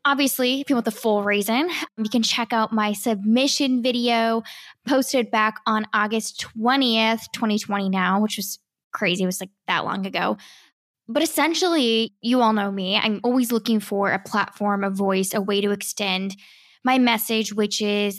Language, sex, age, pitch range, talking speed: English, female, 10-29, 205-235 Hz, 170 wpm